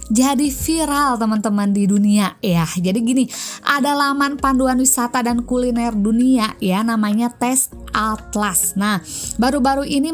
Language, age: Indonesian, 20-39